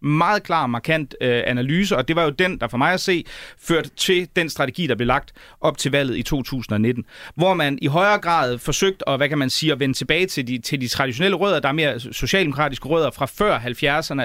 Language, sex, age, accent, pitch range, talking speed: Danish, male, 30-49, native, 135-175 Hz, 230 wpm